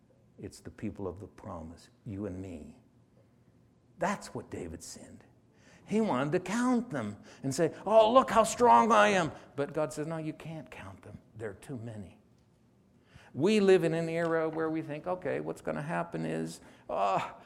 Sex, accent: male, American